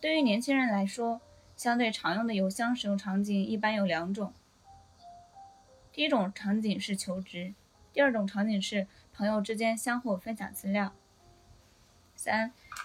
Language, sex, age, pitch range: Chinese, female, 20-39, 190-245 Hz